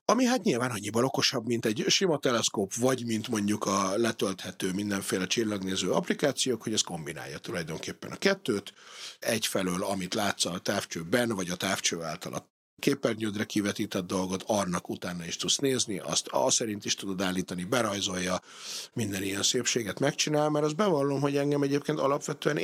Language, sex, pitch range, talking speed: Hungarian, male, 100-135 Hz, 155 wpm